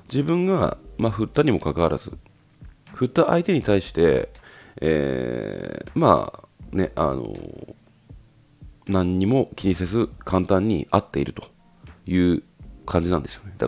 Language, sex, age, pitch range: Japanese, male, 40-59, 80-125 Hz